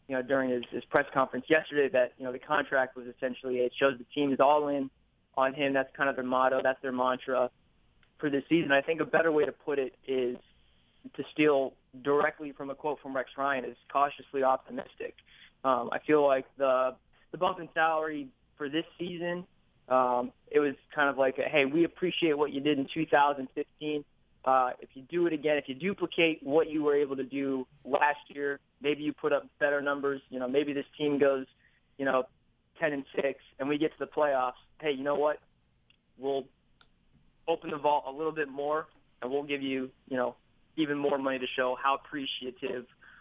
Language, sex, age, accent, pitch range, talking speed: English, male, 20-39, American, 130-150 Hz, 205 wpm